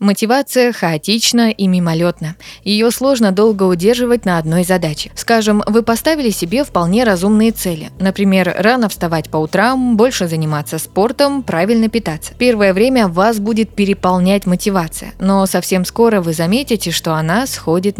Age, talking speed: 20-39, 140 wpm